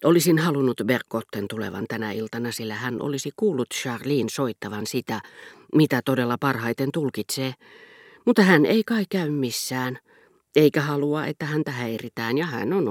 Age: 40-59